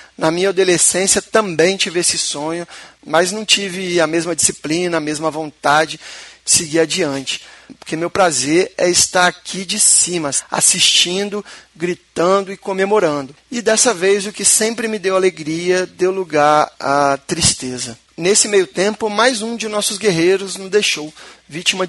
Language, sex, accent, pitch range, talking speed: Portuguese, male, Brazilian, 165-200 Hz, 150 wpm